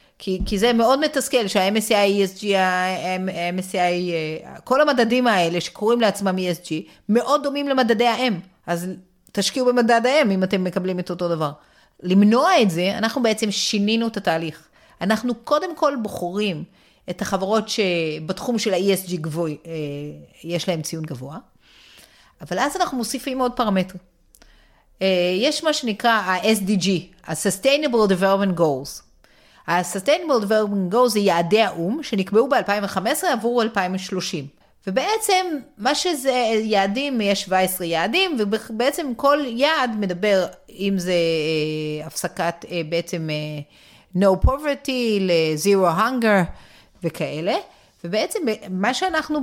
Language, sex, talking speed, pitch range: Hebrew, female, 120 wpm, 180-245 Hz